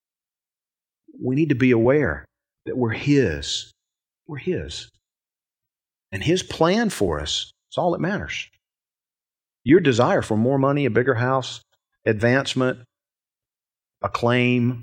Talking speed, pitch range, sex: 115 wpm, 110-150 Hz, male